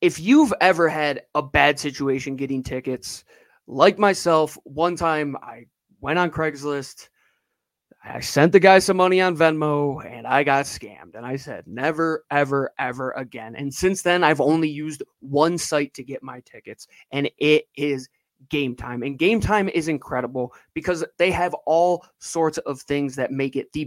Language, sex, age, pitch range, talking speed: English, male, 20-39, 130-160 Hz, 175 wpm